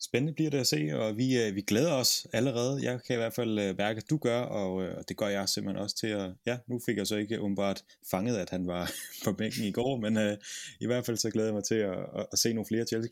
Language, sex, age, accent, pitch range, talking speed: Danish, male, 20-39, native, 105-125 Hz, 290 wpm